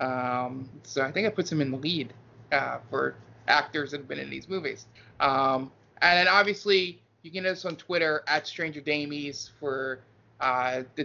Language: English